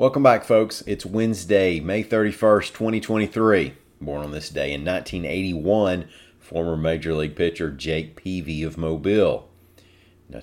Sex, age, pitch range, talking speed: male, 40-59, 80-100 Hz, 130 wpm